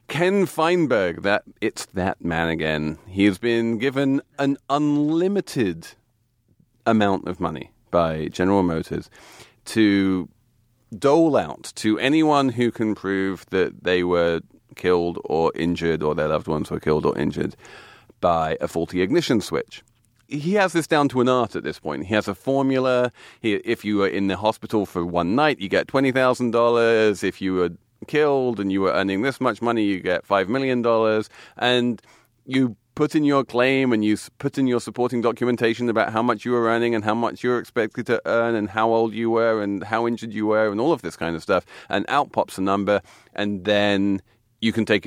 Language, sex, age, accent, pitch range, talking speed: English, male, 40-59, British, 95-125 Hz, 190 wpm